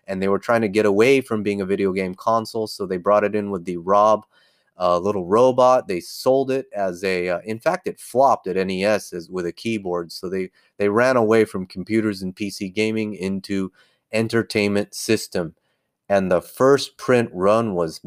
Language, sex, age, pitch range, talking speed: English, male, 30-49, 100-125 Hz, 195 wpm